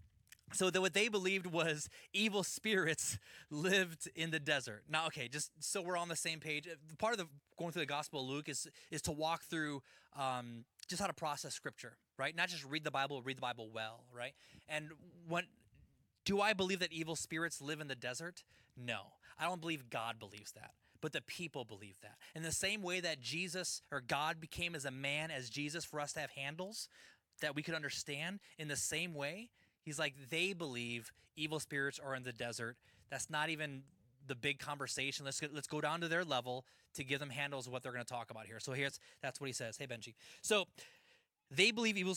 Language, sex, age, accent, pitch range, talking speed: English, male, 20-39, American, 135-170 Hz, 215 wpm